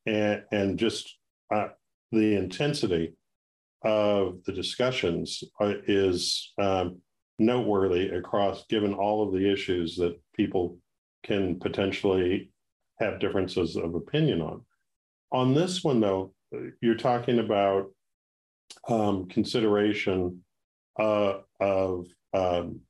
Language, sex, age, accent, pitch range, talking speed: English, male, 50-69, American, 90-115 Hz, 100 wpm